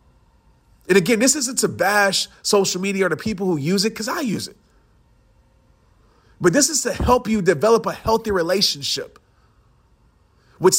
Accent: American